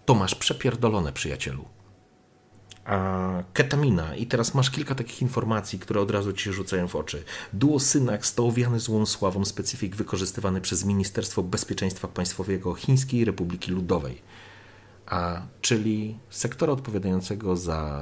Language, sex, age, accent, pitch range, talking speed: Polish, male, 40-59, native, 95-115 Hz, 125 wpm